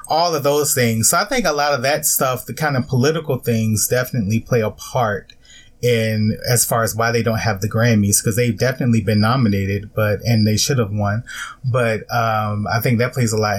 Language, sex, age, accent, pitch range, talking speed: English, male, 30-49, American, 110-130 Hz, 220 wpm